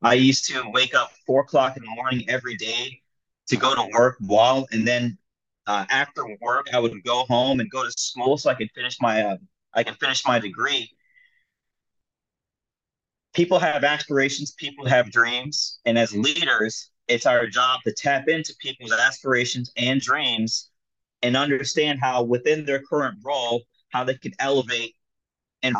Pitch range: 120-155 Hz